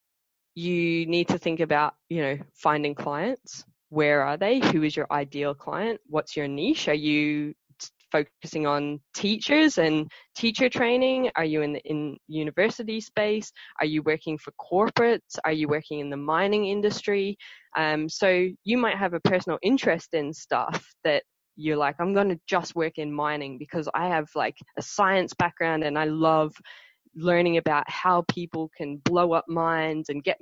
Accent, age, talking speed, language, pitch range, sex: Australian, 10-29, 170 wpm, English, 150-185 Hz, female